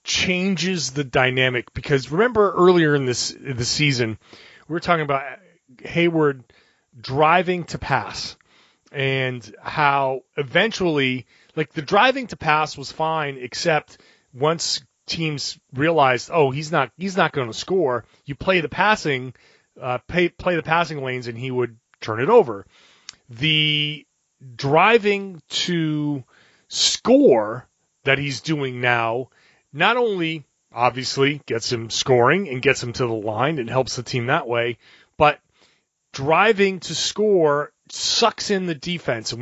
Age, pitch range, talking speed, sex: 30-49, 125-165 Hz, 140 wpm, male